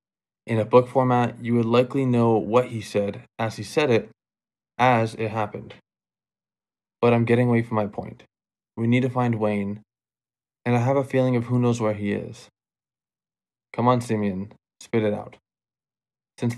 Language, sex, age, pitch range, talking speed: English, male, 20-39, 105-120 Hz, 175 wpm